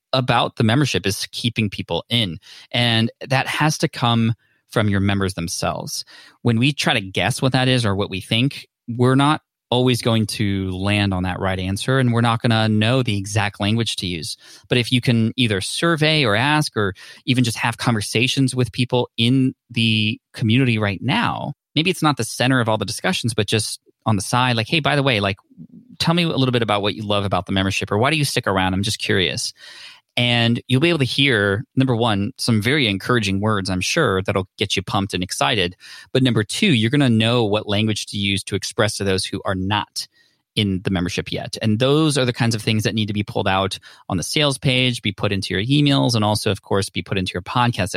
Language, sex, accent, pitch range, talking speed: English, male, American, 100-130 Hz, 225 wpm